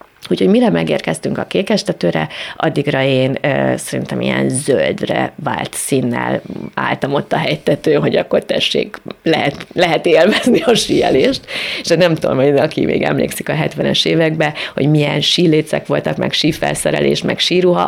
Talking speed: 150 wpm